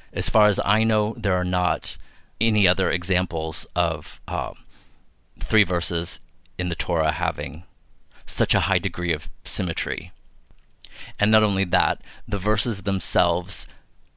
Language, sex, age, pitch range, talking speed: English, male, 30-49, 85-105 Hz, 135 wpm